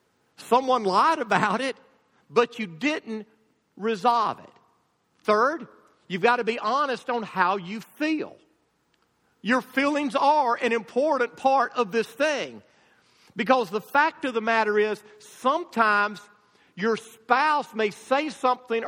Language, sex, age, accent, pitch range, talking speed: English, male, 50-69, American, 205-255 Hz, 130 wpm